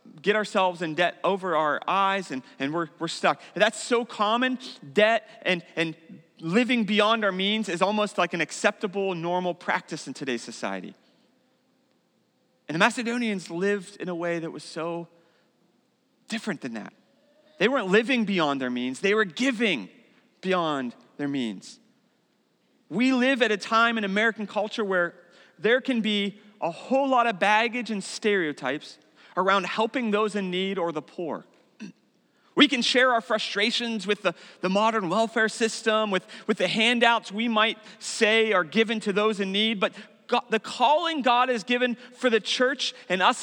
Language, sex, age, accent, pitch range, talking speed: English, male, 30-49, American, 185-240 Hz, 165 wpm